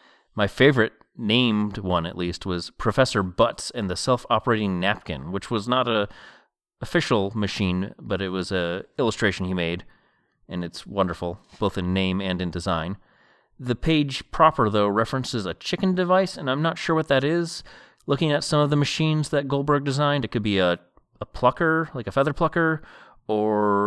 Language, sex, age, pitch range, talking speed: English, male, 30-49, 95-130 Hz, 175 wpm